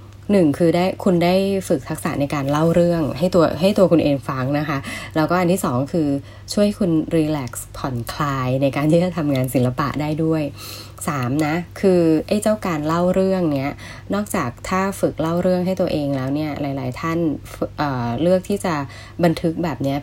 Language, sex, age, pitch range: Thai, female, 20-39, 130-175 Hz